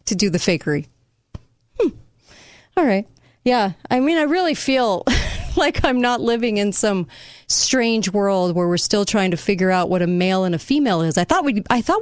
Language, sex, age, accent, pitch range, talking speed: English, female, 30-49, American, 170-220 Hz, 200 wpm